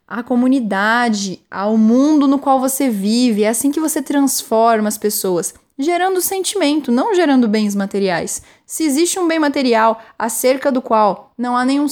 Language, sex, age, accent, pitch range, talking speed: Portuguese, female, 10-29, Brazilian, 245-320 Hz, 160 wpm